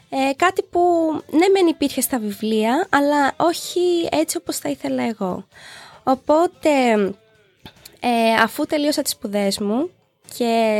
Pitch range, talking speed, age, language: 225-295 Hz, 130 wpm, 20-39, Greek